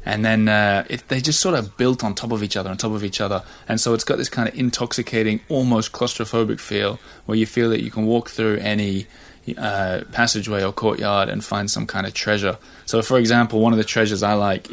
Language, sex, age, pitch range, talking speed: English, male, 20-39, 100-115 Hz, 230 wpm